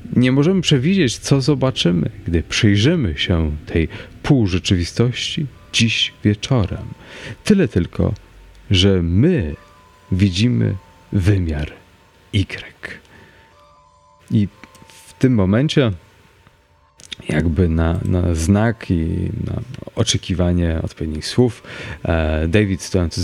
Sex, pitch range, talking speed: male, 85-110 Hz, 90 wpm